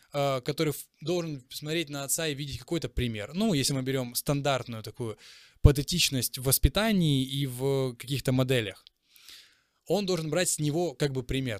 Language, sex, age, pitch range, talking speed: Ukrainian, male, 20-39, 135-160 Hz, 155 wpm